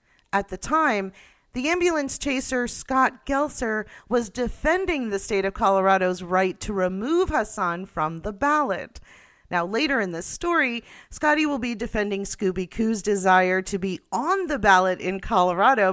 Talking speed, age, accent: 145 wpm, 40-59, American